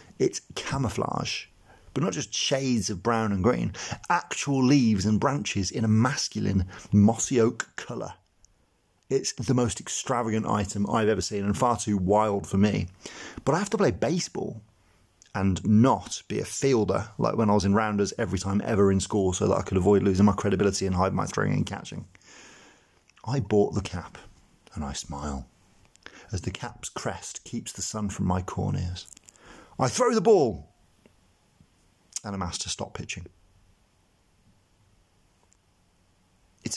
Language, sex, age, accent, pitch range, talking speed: English, male, 30-49, British, 95-115 Hz, 160 wpm